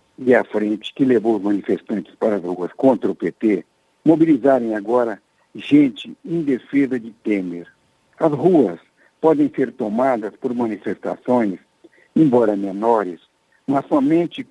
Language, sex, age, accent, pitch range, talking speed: Portuguese, male, 60-79, Brazilian, 105-145 Hz, 125 wpm